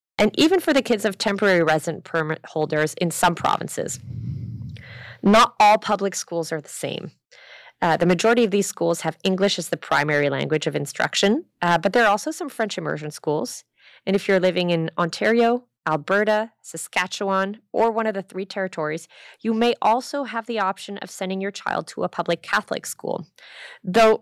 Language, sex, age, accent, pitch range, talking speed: English, female, 20-39, American, 160-210 Hz, 180 wpm